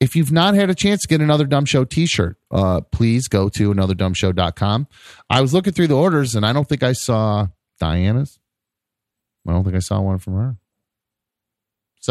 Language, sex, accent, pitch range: English, male, American, 95-135 Hz